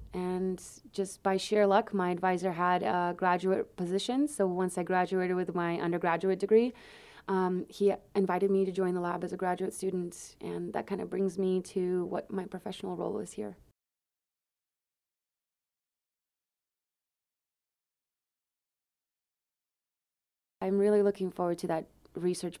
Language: English